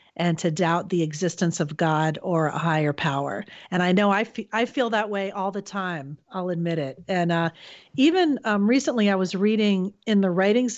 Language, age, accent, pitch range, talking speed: English, 40-59, American, 160-200 Hz, 200 wpm